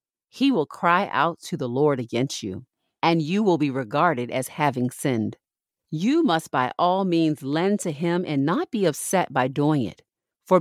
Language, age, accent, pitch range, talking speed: English, 40-59, American, 140-175 Hz, 185 wpm